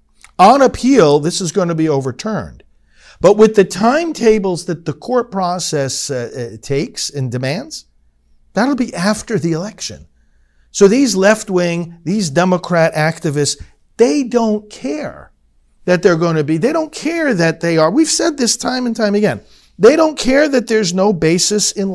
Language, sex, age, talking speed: English, male, 50-69, 160 wpm